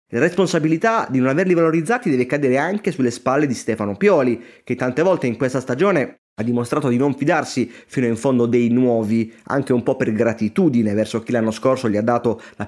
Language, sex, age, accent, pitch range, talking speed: Italian, male, 30-49, native, 115-145 Hz, 205 wpm